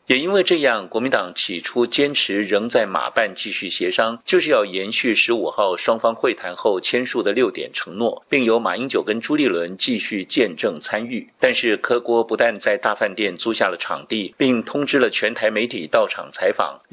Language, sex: Chinese, male